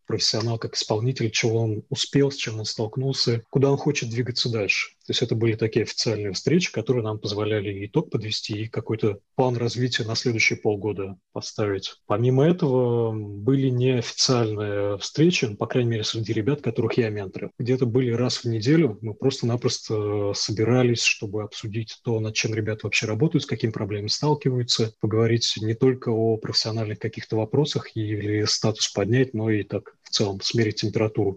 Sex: male